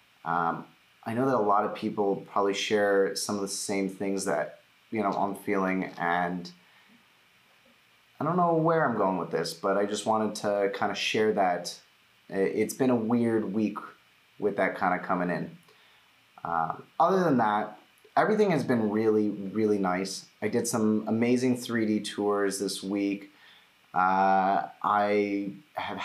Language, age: English, 30-49